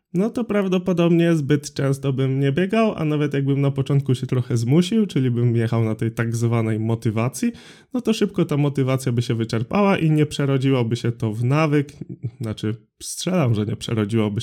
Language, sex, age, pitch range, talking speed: Polish, male, 20-39, 115-155 Hz, 185 wpm